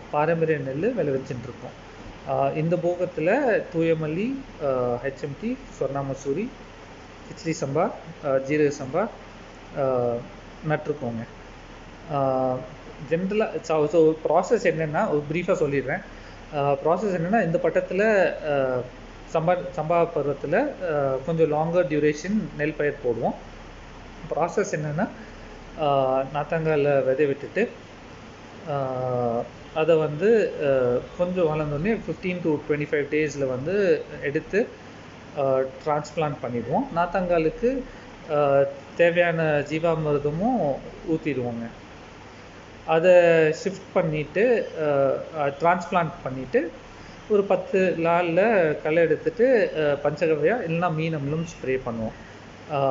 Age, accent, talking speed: 30-49, native, 80 wpm